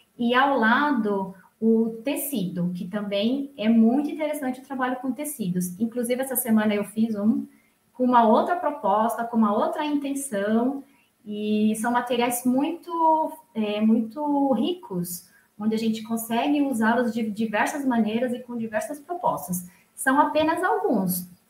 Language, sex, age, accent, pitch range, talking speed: Portuguese, female, 20-39, Brazilian, 200-255 Hz, 135 wpm